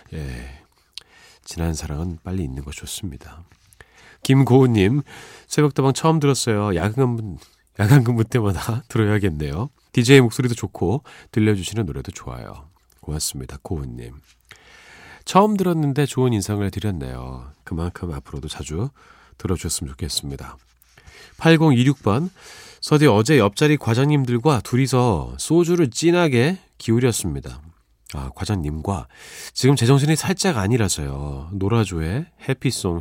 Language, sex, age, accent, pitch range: Korean, male, 40-59, native, 80-135 Hz